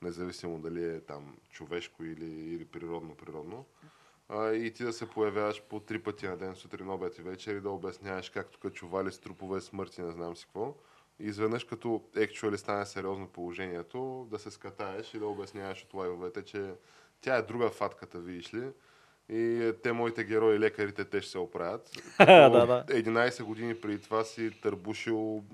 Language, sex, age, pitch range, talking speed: Bulgarian, male, 10-29, 90-110 Hz, 175 wpm